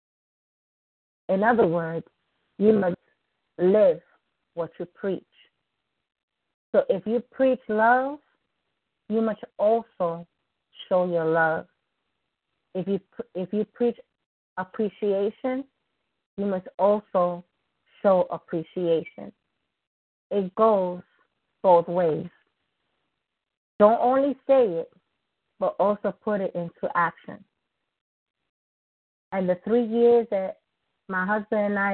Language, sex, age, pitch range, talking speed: English, female, 40-59, 180-220 Hz, 100 wpm